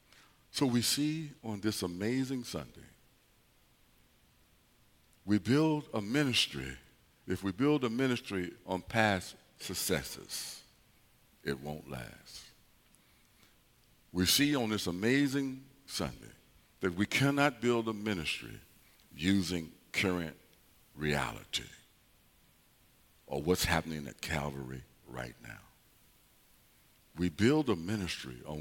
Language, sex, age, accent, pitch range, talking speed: English, male, 60-79, American, 80-115 Hz, 105 wpm